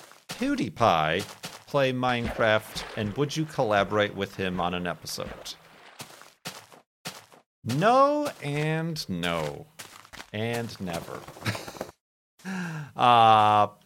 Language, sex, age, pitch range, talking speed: English, male, 40-59, 90-150 Hz, 80 wpm